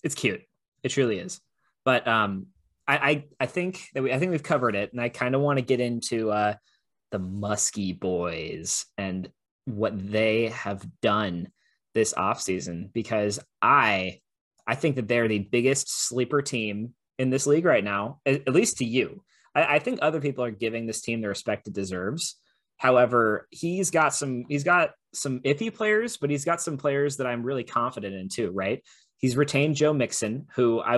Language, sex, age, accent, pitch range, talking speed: English, male, 20-39, American, 110-140 Hz, 185 wpm